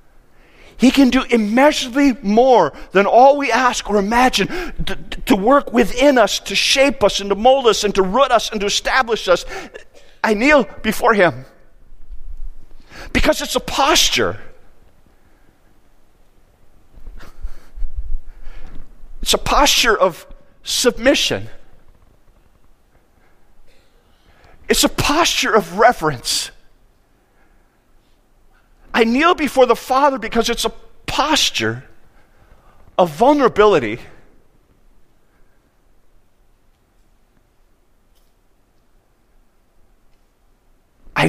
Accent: American